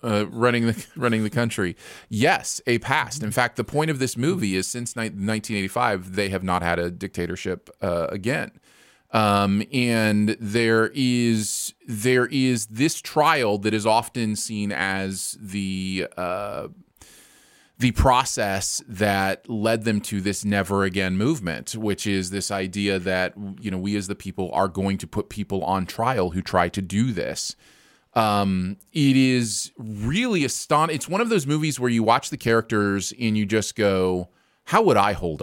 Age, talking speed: 30-49, 170 wpm